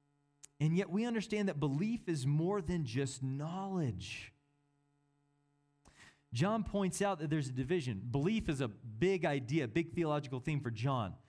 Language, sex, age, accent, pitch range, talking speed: English, male, 30-49, American, 135-180 Hz, 155 wpm